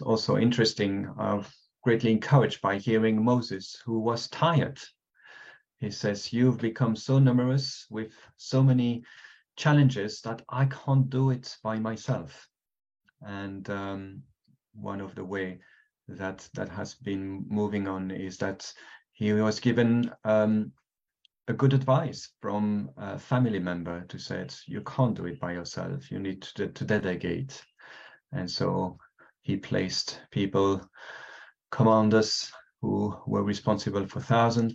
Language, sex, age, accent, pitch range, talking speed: English, male, 40-59, French, 100-125 Hz, 135 wpm